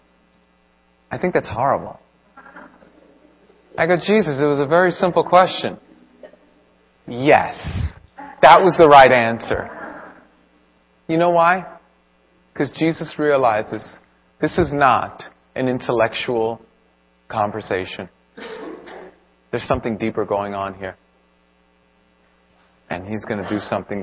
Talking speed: 105 wpm